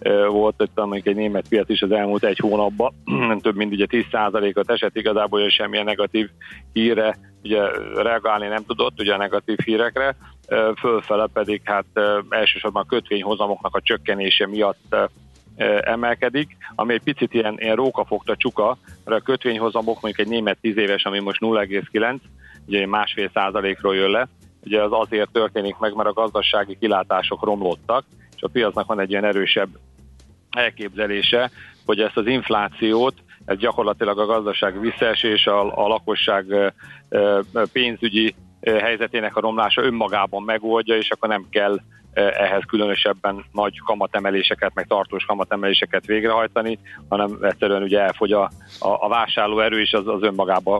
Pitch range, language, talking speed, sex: 100-115 Hz, Hungarian, 140 wpm, male